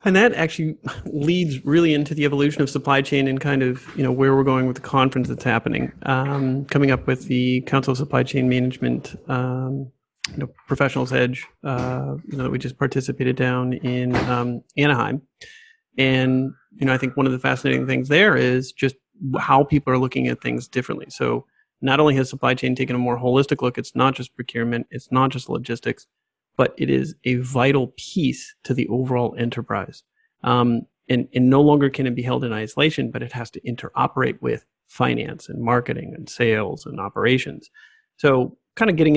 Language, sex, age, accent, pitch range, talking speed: English, male, 30-49, American, 125-145 Hz, 195 wpm